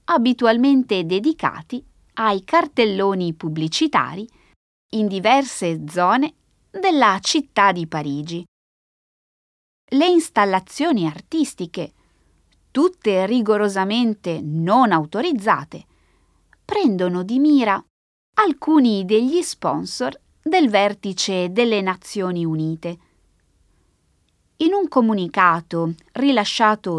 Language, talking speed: Italian, 75 wpm